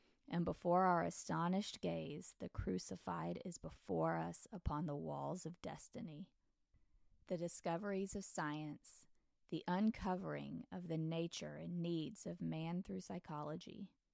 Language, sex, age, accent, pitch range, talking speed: English, female, 20-39, American, 155-185 Hz, 125 wpm